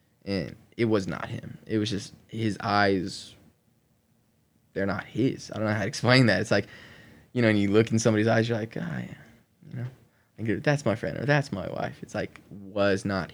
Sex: male